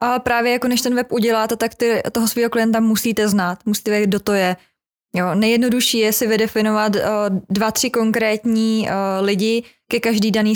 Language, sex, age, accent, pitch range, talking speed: Czech, female, 20-39, native, 210-235 Hz, 190 wpm